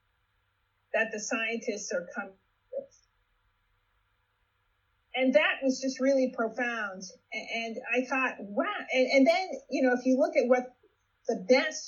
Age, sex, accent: 40-59, female, American